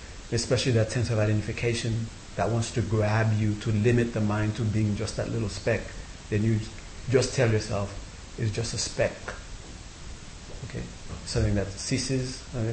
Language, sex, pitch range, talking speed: English, male, 85-110 Hz, 160 wpm